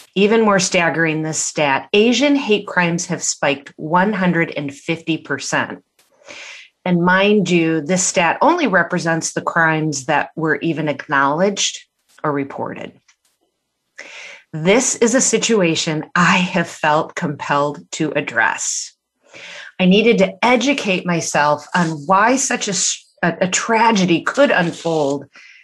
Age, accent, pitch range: 30-49, American, 160-210 Hz